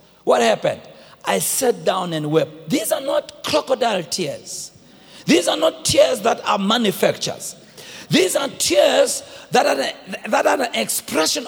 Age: 50-69